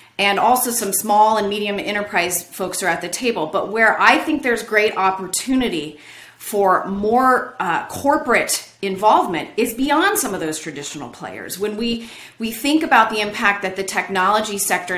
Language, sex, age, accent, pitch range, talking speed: English, female, 30-49, American, 185-250 Hz, 170 wpm